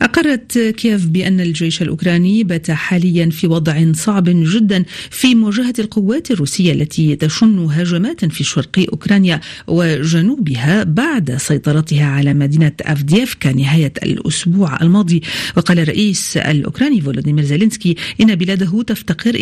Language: Arabic